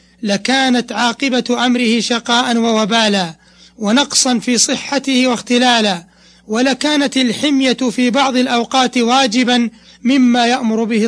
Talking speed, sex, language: 95 wpm, male, Arabic